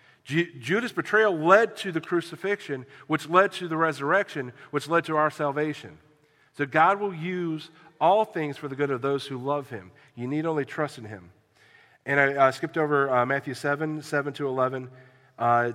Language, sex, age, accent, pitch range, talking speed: English, male, 40-59, American, 130-160 Hz, 185 wpm